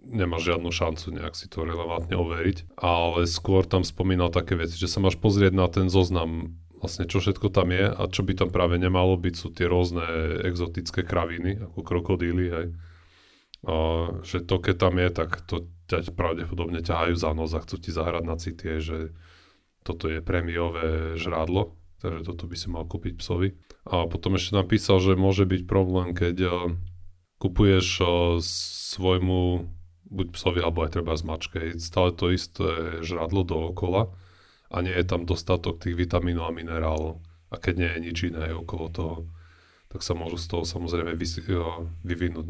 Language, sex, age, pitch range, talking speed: Slovak, male, 30-49, 85-90 Hz, 170 wpm